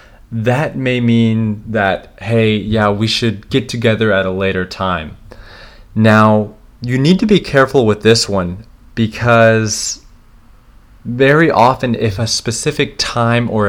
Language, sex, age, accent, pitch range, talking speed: English, male, 30-49, American, 100-120 Hz, 135 wpm